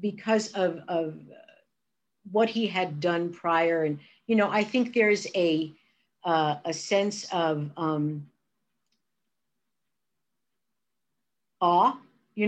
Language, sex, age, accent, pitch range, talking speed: English, female, 50-69, American, 170-215 Hz, 105 wpm